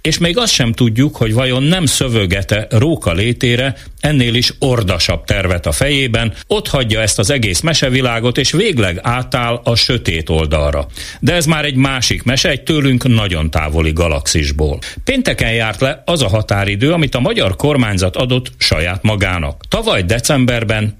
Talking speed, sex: 155 wpm, male